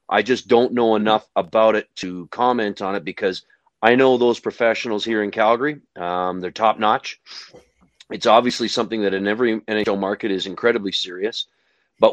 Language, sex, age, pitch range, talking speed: English, male, 40-59, 100-120 Hz, 175 wpm